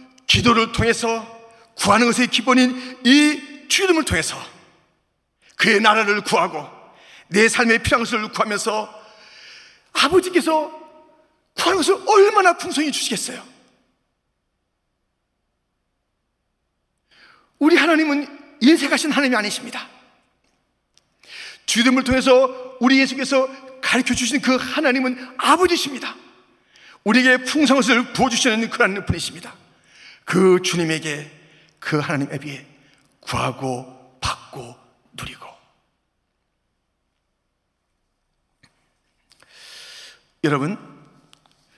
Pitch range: 170-265 Hz